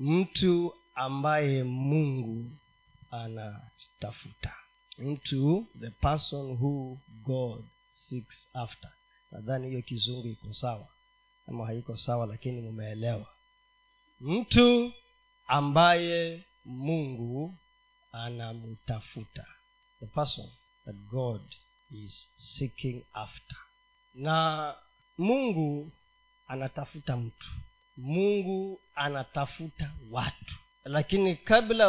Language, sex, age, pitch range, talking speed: Swahili, male, 40-59, 125-200 Hz, 75 wpm